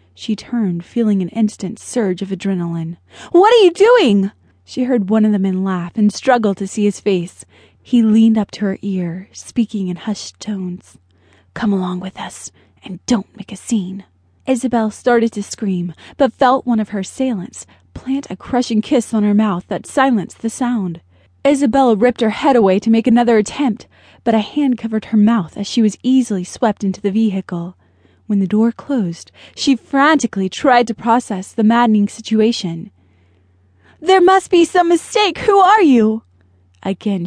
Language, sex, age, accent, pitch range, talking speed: English, female, 20-39, American, 190-240 Hz, 175 wpm